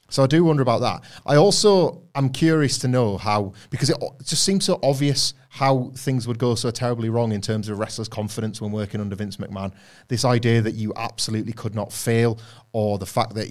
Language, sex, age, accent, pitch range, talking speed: English, male, 30-49, British, 105-125 Hz, 215 wpm